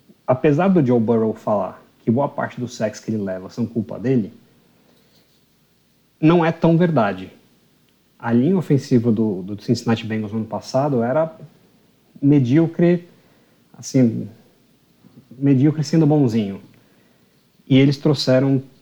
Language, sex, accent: Portuguese, male, Brazilian